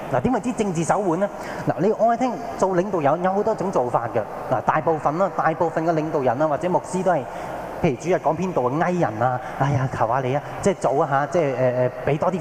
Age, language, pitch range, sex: 20-39, Japanese, 140-180 Hz, male